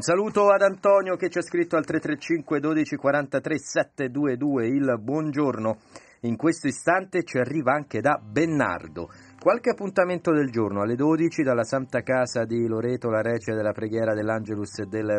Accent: native